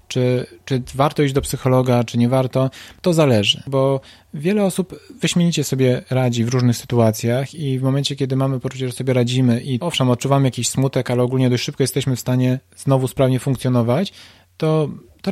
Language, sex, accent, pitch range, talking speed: Polish, male, native, 115-135 Hz, 180 wpm